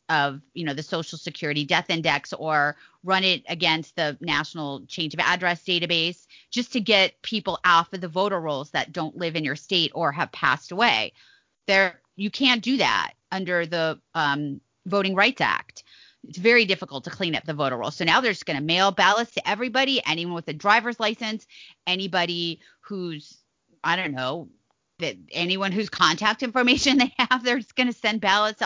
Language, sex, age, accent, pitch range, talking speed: English, female, 30-49, American, 160-210 Hz, 185 wpm